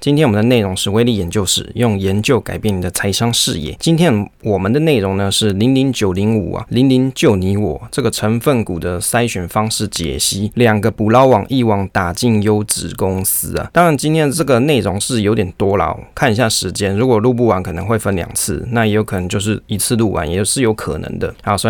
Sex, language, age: male, Chinese, 20-39